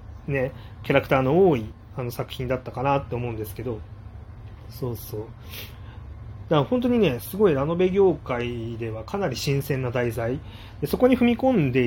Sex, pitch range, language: male, 115-170 Hz, Japanese